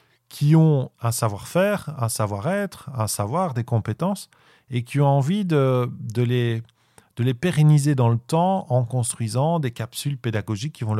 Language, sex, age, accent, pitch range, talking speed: French, male, 40-59, French, 115-150 Hz, 165 wpm